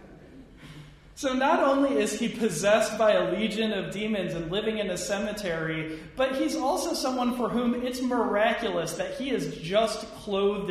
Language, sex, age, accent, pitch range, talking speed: English, male, 30-49, American, 160-220 Hz, 160 wpm